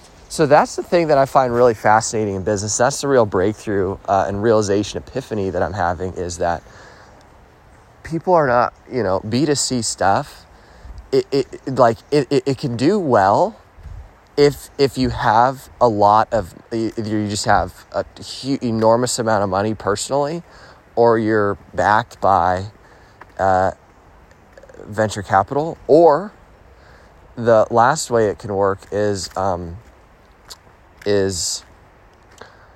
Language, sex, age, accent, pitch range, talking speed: English, male, 20-39, American, 95-120 Hz, 135 wpm